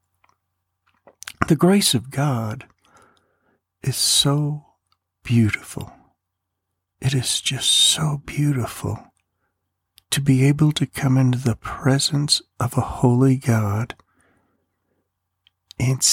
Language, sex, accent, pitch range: English, male, American, 105-145 Hz